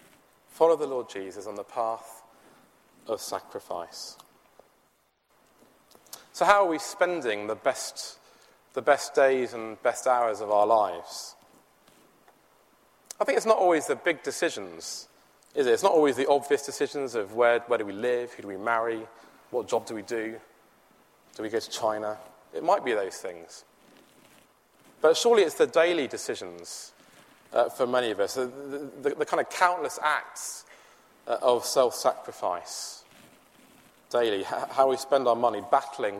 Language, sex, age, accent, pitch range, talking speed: English, male, 30-49, British, 115-155 Hz, 155 wpm